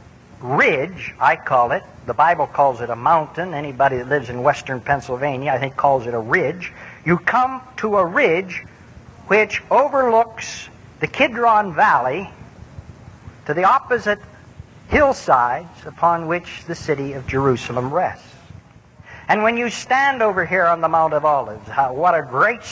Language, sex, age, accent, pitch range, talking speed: English, male, 50-69, American, 140-215 Hz, 155 wpm